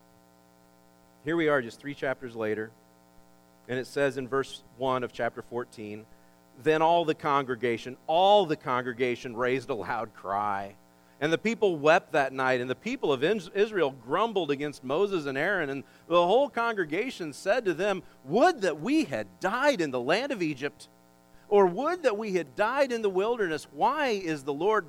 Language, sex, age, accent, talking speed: English, male, 40-59, American, 175 wpm